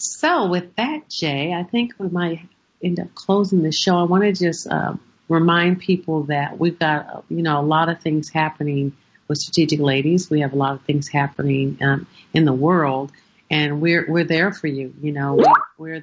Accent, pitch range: American, 145-175 Hz